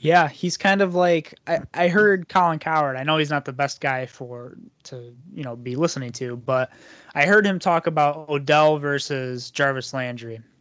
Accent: American